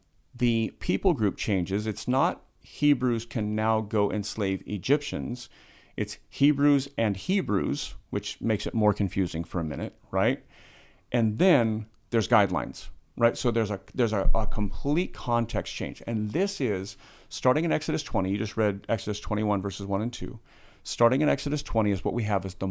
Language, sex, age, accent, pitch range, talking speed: English, male, 40-59, American, 100-130 Hz, 170 wpm